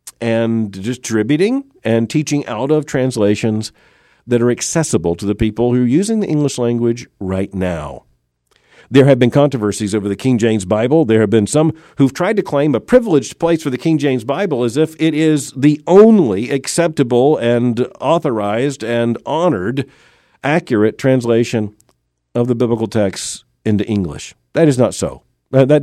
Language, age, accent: English, 50-69, American